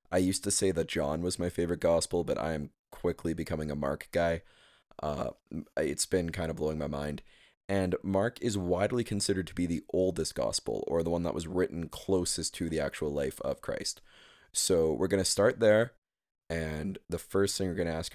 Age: 20-39